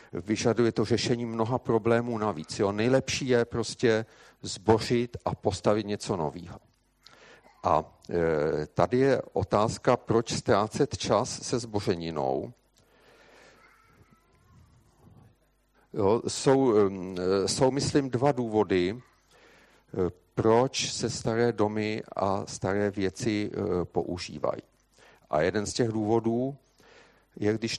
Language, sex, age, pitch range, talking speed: Czech, male, 50-69, 95-115 Hz, 105 wpm